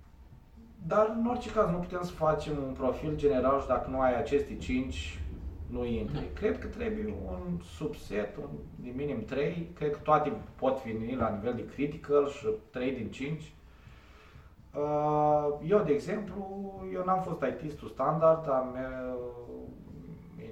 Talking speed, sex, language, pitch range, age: 145 wpm, male, Romanian, 110-150 Hz, 20-39